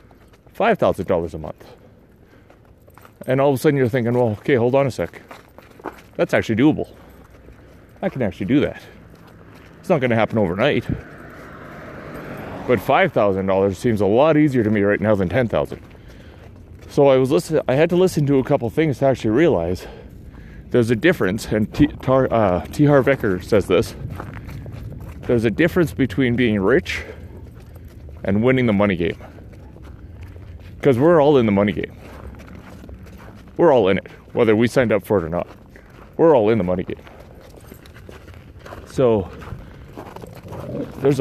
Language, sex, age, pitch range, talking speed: English, male, 30-49, 95-130 Hz, 150 wpm